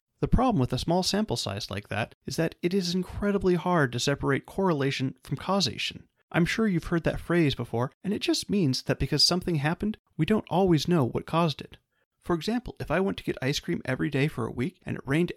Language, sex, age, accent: English, male, 30-49, American